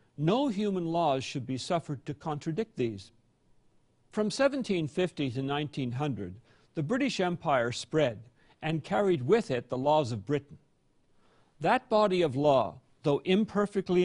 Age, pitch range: 50-69, 135-190 Hz